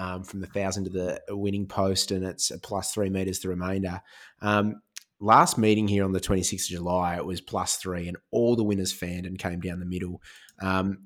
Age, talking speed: 20-39, 215 wpm